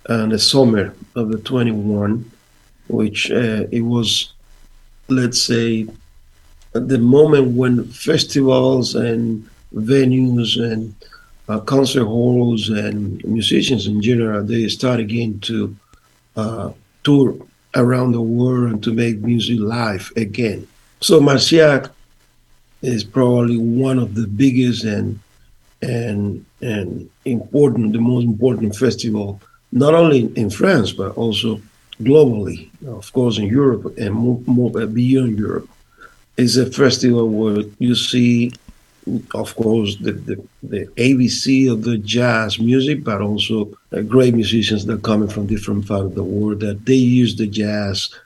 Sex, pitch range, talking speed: male, 105-125 Hz, 130 wpm